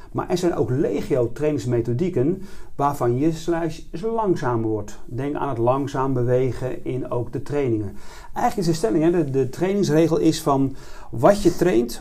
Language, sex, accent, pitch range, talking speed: Dutch, male, Dutch, 120-160 Hz, 160 wpm